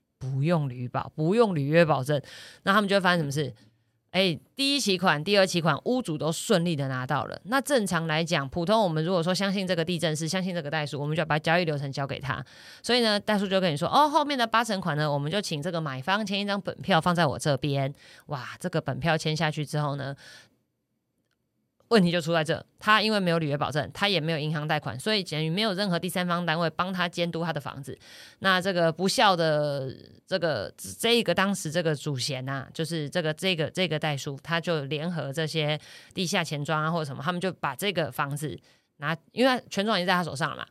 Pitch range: 150-190 Hz